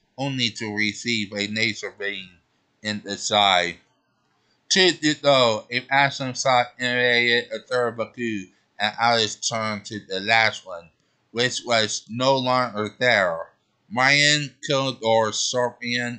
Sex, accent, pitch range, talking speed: male, American, 110-155 Hz, 130 wpm